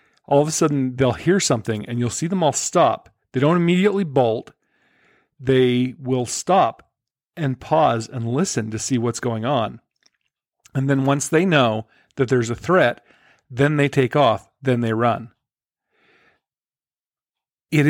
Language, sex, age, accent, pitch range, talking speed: English, male, 40-59, American, 120-150 Hz, 155 wpm